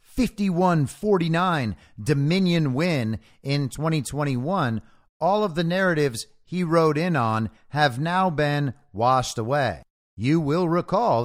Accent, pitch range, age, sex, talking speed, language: American, 125-170 Hz, 50-69, male, 115 wpm, English